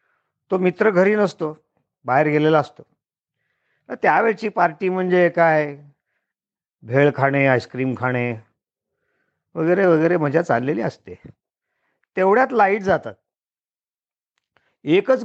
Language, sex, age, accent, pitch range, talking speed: Marathi, male, 50-69, native, 150-185 Hz, 70 wpm